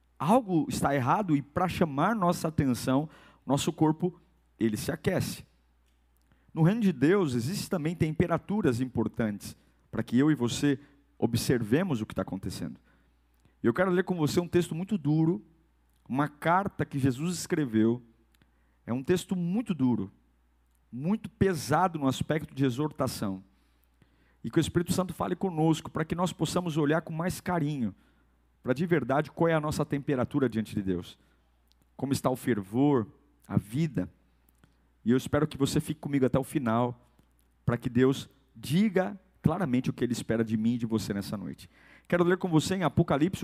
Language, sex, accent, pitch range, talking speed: Portuguese, male, Brazilian, 115-170 Hz, 165 wpm